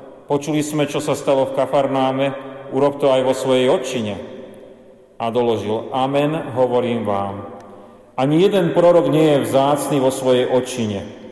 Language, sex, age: Slovak, male, 40-59